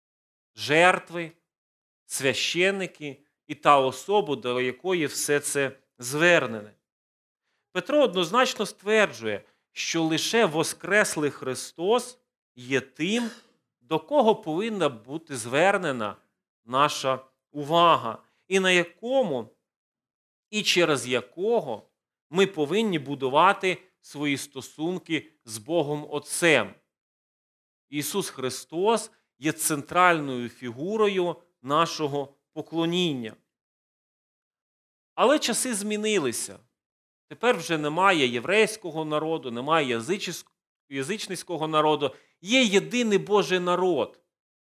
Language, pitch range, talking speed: Ukrainian, 145-195 Hz, 85 wpm